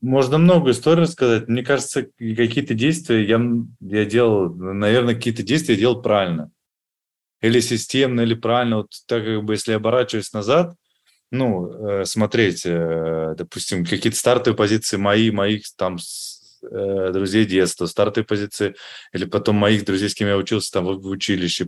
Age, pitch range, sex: 20-39, 100-125 Hz, male